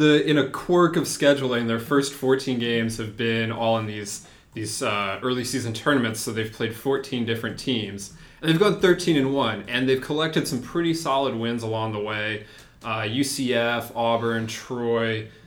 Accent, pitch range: American, 110-135 Hz